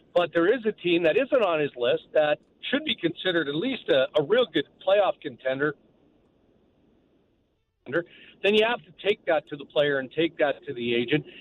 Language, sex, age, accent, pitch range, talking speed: English, male, 50-69, American, 145-205 Hz, 195 wpm